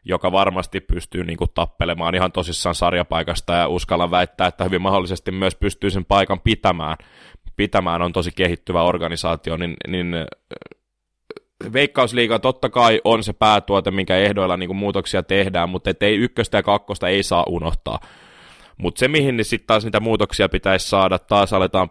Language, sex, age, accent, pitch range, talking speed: Finnish, male, 20-39, native, 90-110 Hz, 155 wpm